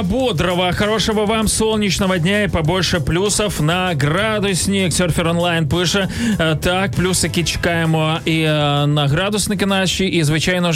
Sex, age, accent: male, 20-39, native